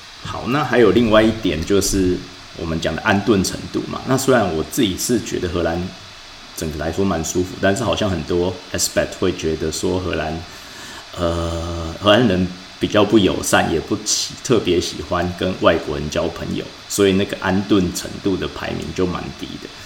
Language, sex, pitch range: Chinese, male, 85-100 Hz